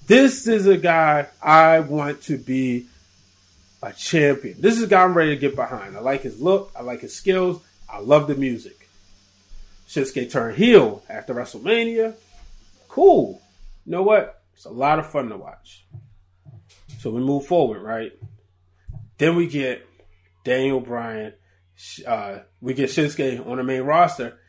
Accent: American